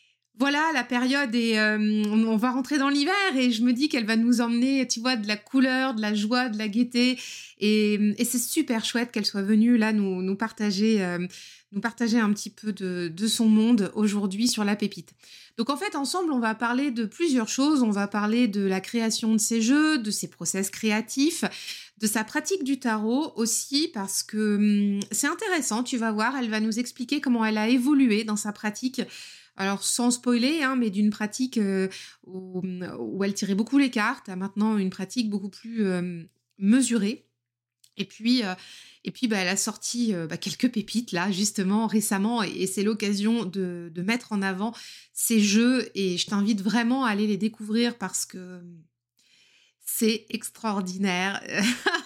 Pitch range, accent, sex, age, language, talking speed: 205-245 Hz, French, female, 20-39, French, 190 wpm